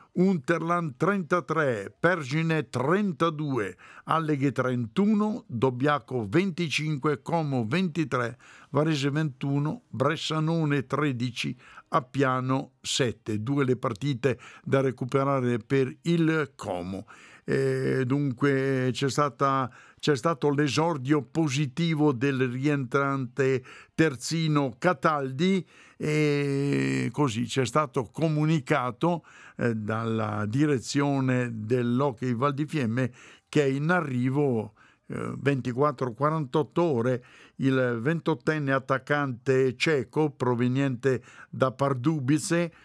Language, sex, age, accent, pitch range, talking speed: Italian, male, 50-69, native, 130-155 Hz, 85 wpm